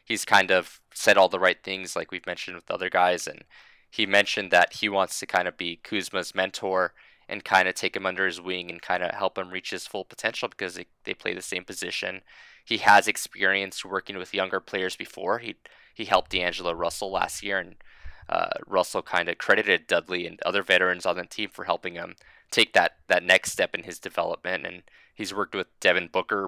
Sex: male